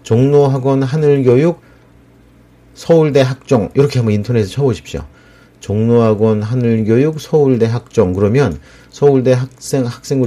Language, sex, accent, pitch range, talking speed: English, male, Korean, 95-135 Hz, 80 wpm